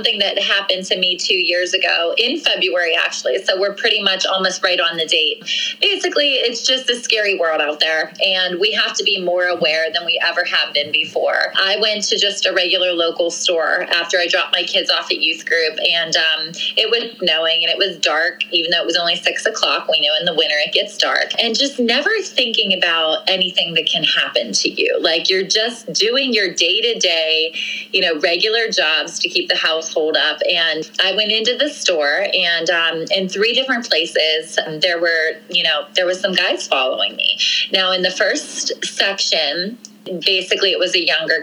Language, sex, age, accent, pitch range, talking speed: English, female, 20-39, American, 165-225 Hz, 210 wpm